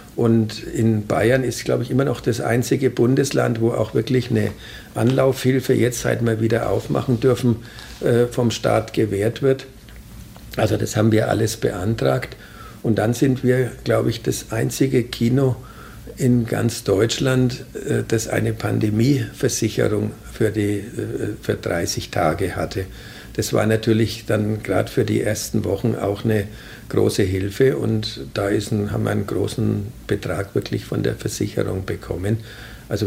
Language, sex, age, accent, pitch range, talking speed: German, male, 50-69, German, 105-120 Hz, 150 wpm